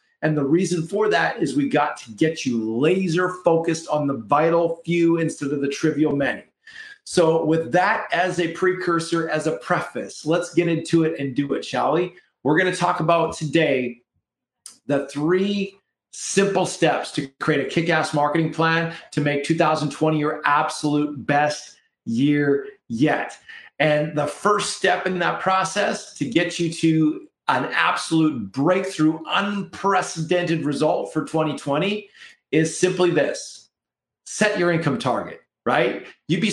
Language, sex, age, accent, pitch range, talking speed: English, male, 40-59, American, 145-175 Hz, 150 wpm